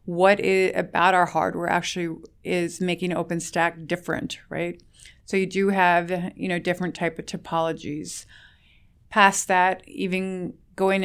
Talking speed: 135 wpm